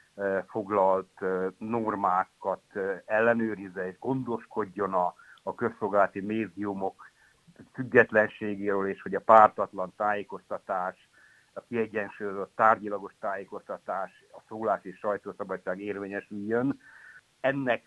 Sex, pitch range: male, 95-115 Hz